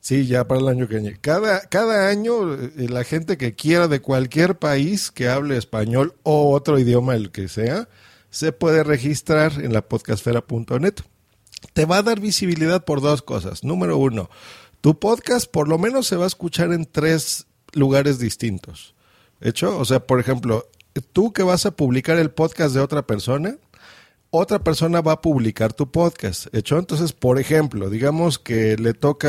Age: 50-69